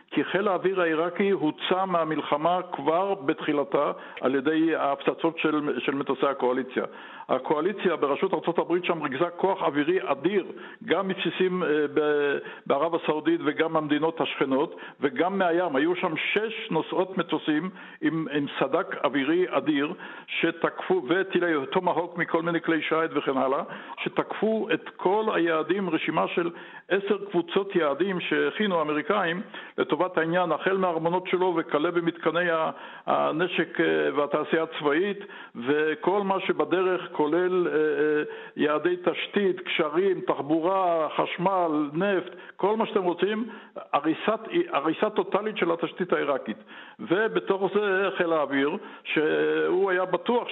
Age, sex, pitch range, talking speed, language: 60-79, male, 155-190 Hz, 120 wpm, Hebrew